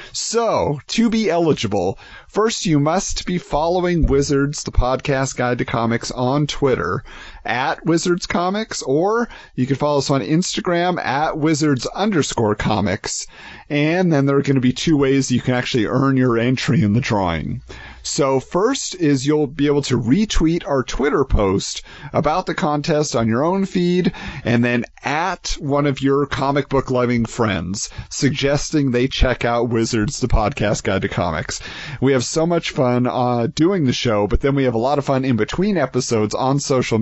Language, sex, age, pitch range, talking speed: English, male, 40-59, 120-155 Hz, 175 wpm